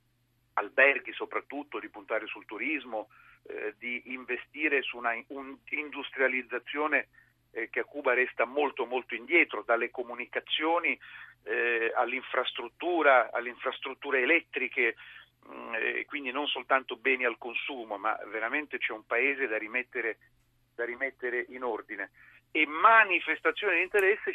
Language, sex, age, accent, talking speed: Italian, male, 40-59, native, 125 wpm